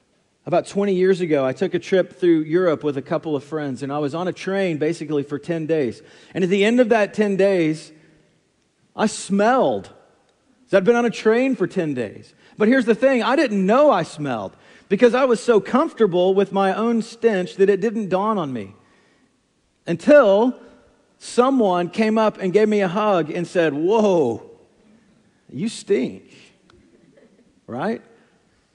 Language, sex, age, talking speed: English, male, 40-59, 170 wpm